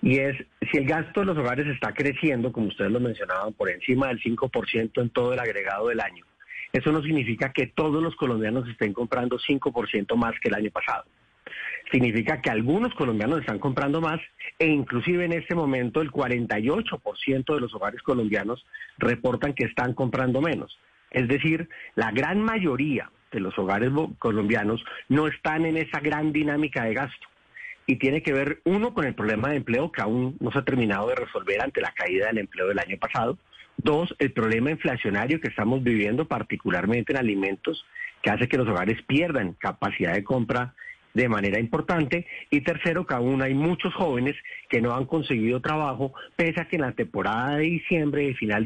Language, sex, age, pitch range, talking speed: Spanish, male, 40-59, 120-155 Hz, 185 wpm